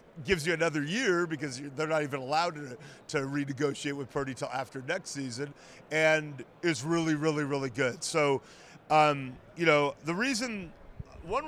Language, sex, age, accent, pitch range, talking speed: English, male, 40-59, American, 140-165 Hz, 160 wpm